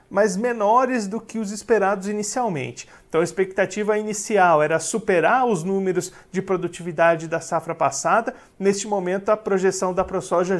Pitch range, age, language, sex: 175-215 Hz, 40-59, Portuguese, male